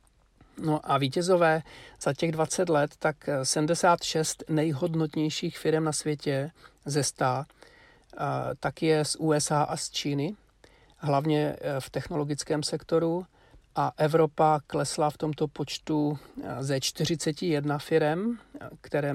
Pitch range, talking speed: 140-160 Hz, 115 wpm